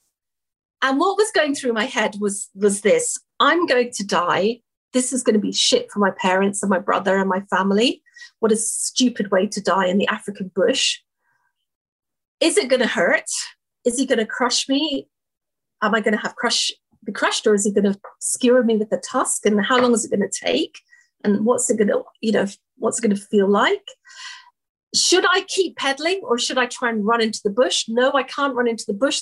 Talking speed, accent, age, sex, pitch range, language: 225 wpm, British, 50-69, female, 220-325 Hz, English